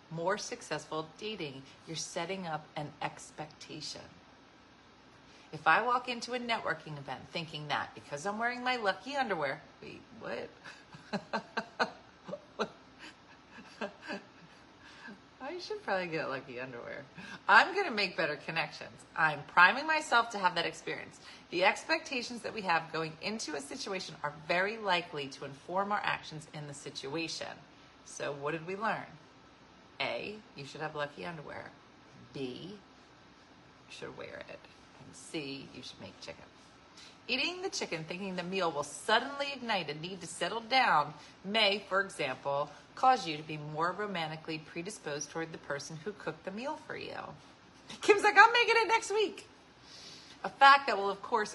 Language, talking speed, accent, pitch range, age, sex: English, 150 wpm, American, 155-225 Hz, 40-59, female